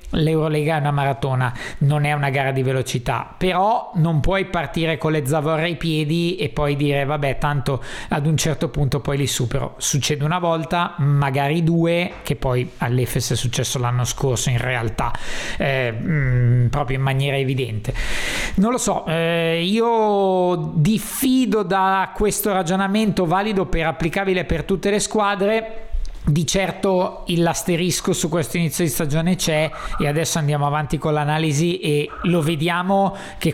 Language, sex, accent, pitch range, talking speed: Italian, male, native, 140-175 Hz, 155 wpm